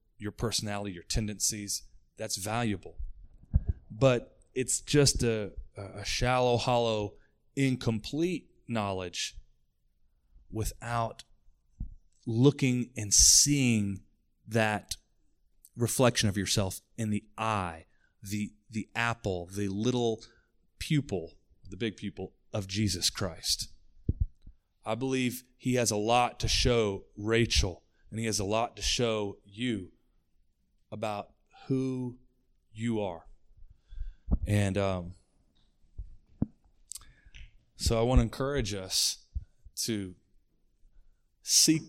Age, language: 30-49, English